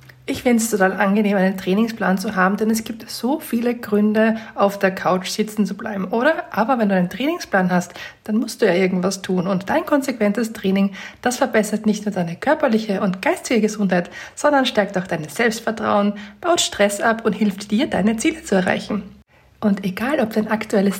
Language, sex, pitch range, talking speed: German, female, 195-240 Hz, 190 wpm